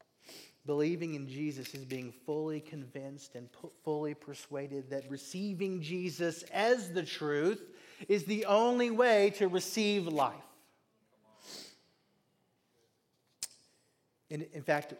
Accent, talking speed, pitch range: American, 105 wpm, 135-210 Hz